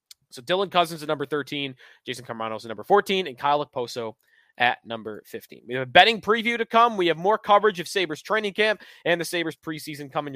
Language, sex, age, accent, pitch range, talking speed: English, male, 20-39, American, 140-190 Hz, 215 wpm